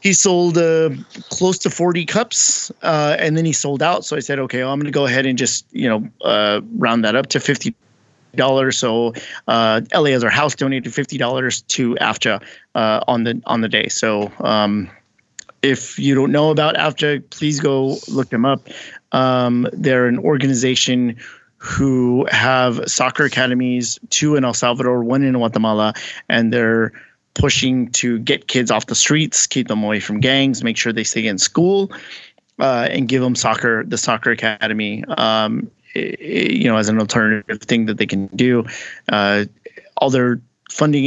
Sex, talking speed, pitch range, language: male, 175 wpm, 115-140 Hz, English